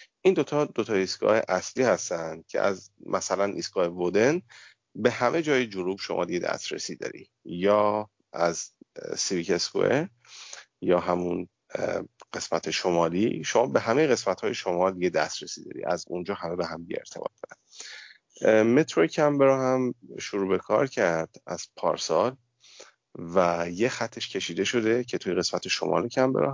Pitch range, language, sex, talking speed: 90-120 Hz, Persian, male, 135 wpm